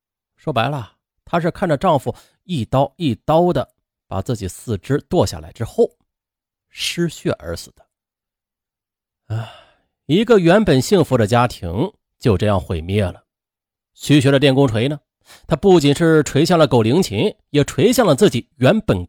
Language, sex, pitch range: Chinese, male, 100-160 Hz